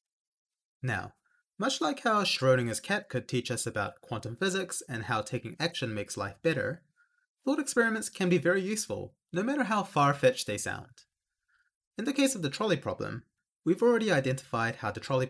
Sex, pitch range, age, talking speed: male, 120-185 Hz, 30-49, 175 wpm